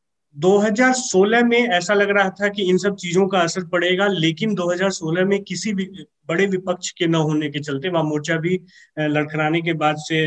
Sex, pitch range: male, 160-195 Hz